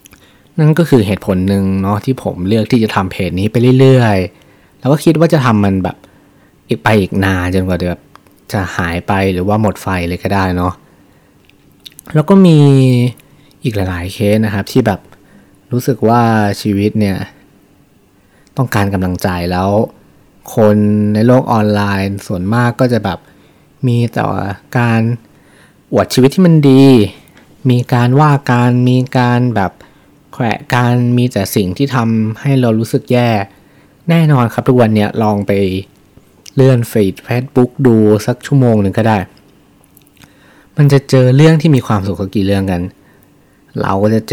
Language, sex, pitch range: Thai, male, 100-125 Hz